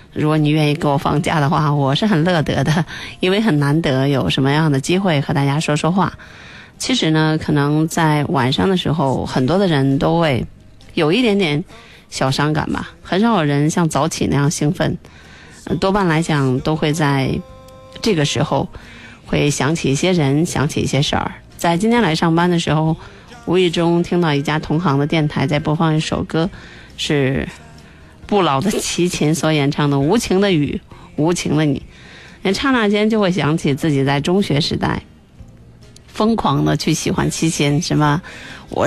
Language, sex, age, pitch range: Chinese, female, 20-39, 140-175 Hz